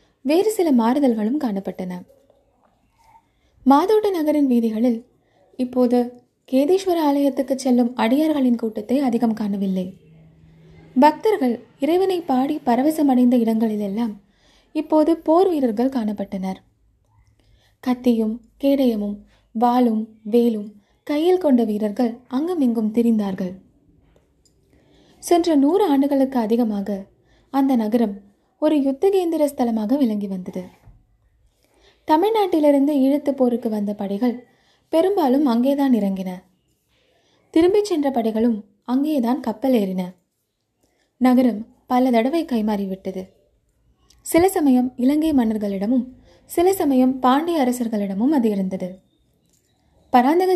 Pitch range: 215-290 Hz